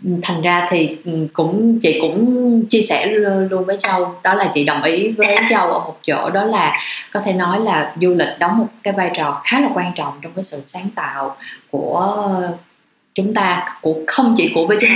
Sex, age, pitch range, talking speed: female, 20-39, 165-220 Hz, 210 wpm